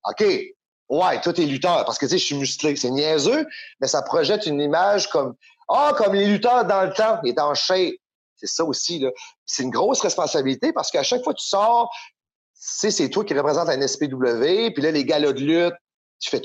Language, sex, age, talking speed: English, male, 30-49, 230 wpm